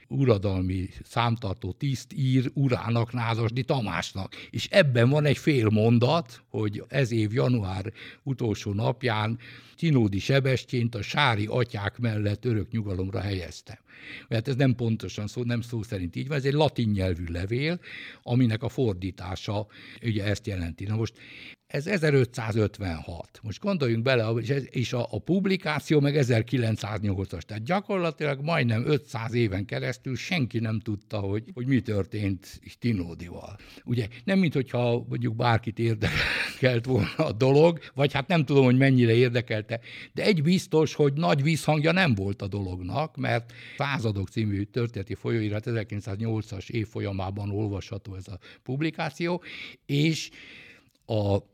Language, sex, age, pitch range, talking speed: Hungarian, male, 60-79, 105-135 Hz, 135 wpm